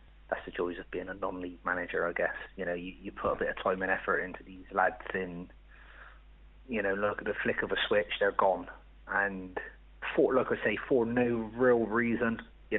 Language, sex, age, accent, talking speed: English, male, 30-49, British, 215 wpm